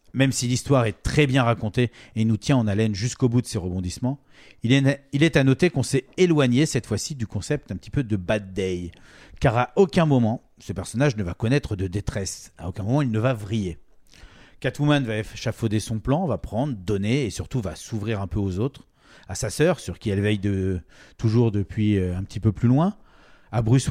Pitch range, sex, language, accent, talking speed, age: 105-140 Hz, male, French, French, 220 wpm, 40-59